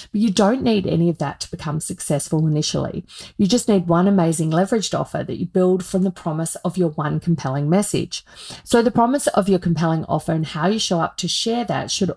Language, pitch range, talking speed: English, 160-200 Hz, 220 wpm